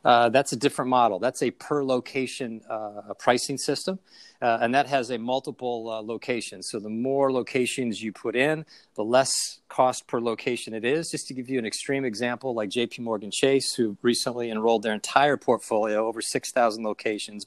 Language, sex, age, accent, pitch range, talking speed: English, male, 40-59, American, 110-135 Hz, 180 wpm